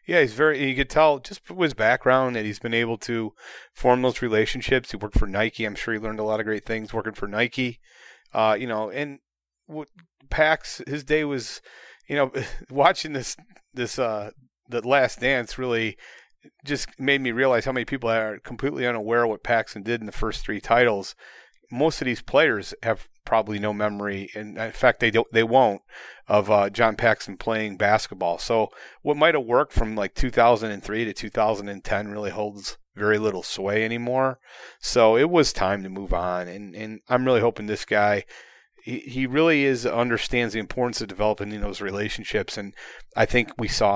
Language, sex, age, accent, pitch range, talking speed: English, male, 30-49, American, 105-120 Hz, 190 wpm